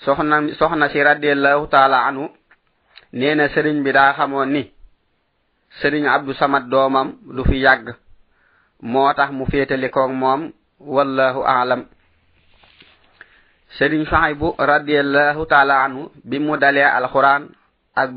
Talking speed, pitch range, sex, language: 110 wpm, 130-145 Hz, male, French